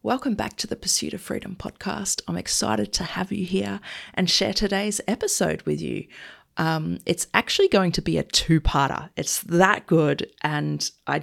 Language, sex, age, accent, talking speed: English, female, 30-49, Australian, 175 wpm